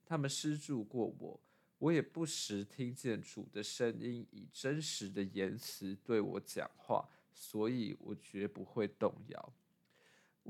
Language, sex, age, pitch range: Chinese, male, 20-39, 115-165 Hz